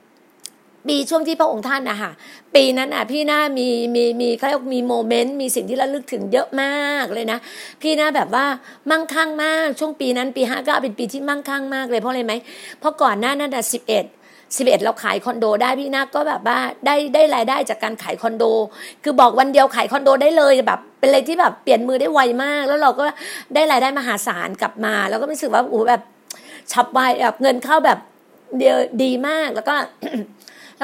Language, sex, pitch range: Thai, female, 245-295 Hz